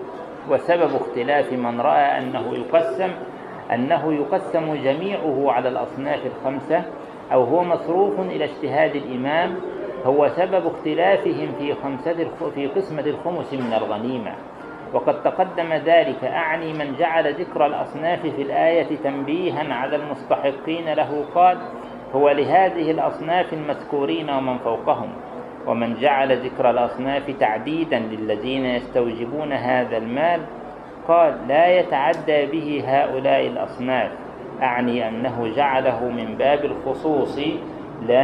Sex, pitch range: male, 135-165 Hz